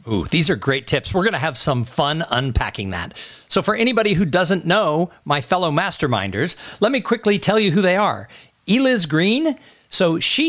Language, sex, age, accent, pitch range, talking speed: English, male, 50-69, American, 140-205 Hz, 195 wpm